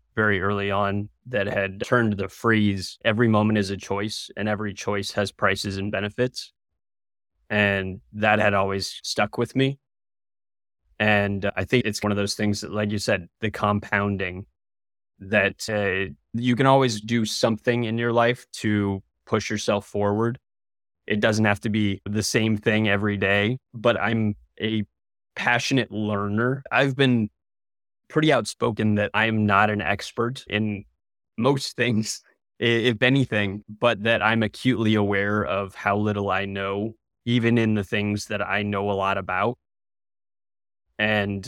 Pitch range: 100-110 Hz